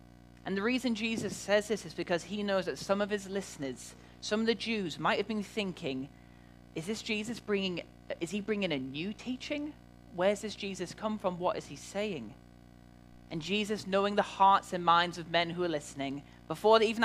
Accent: British